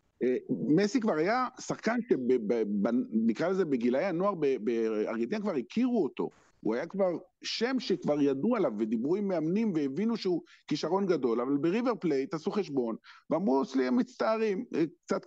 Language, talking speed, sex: Hebrew, 140 wpm, male